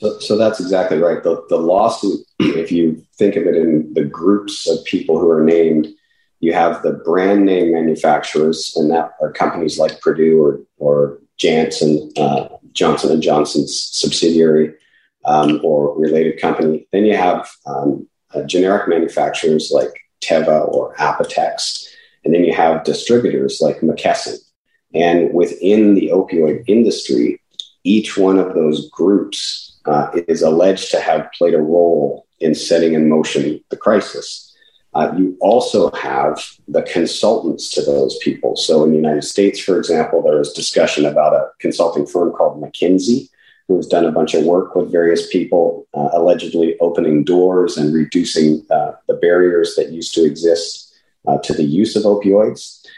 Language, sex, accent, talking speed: English, male, American, 160 wpm